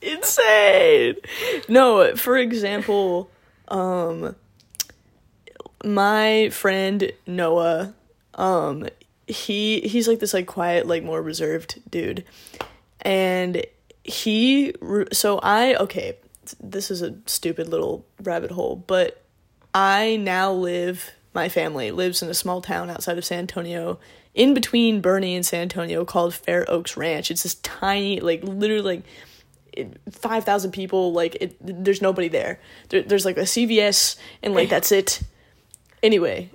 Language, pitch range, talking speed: English, 180-225 Hz, 130 wpm